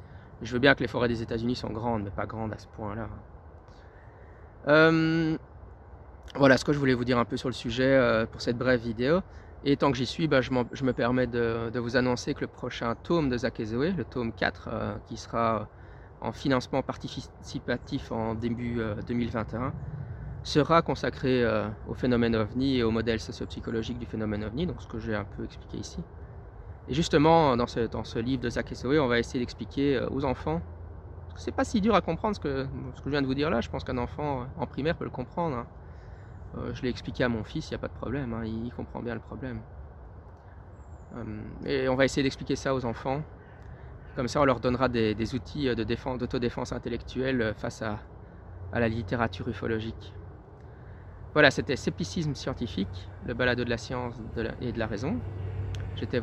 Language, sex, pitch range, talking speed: French, male, 105-130 Hz, 205 wpm